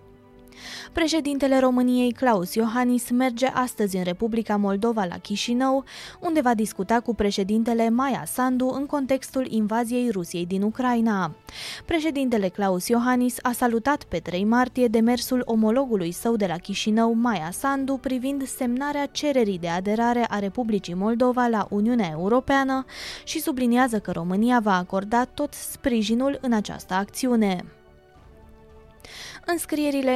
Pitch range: 205-260 Hz